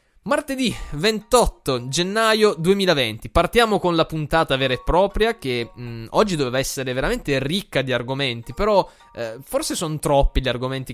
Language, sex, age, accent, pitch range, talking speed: Italian, male, 20-39, native, 125-180 Hz, 150 wpm